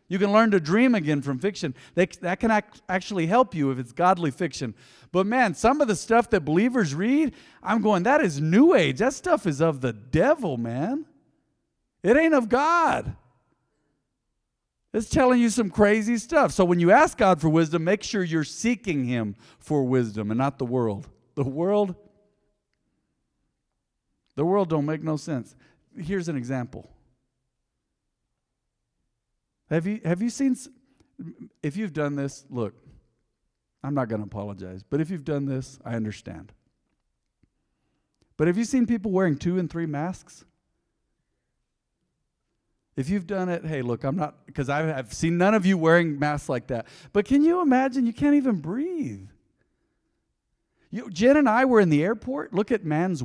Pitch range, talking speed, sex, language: 135-220 Hz, 165 wpm, male, English